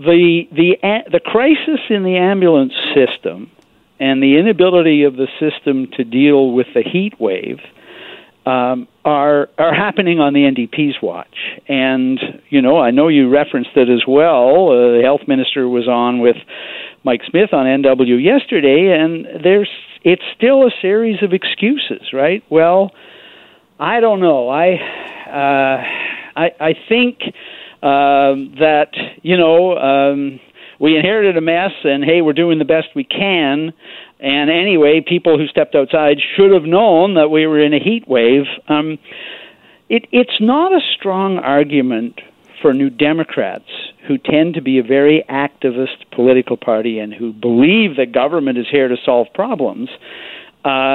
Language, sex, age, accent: English, male, 60-79, American